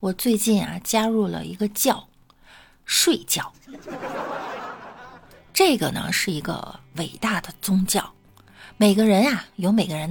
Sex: female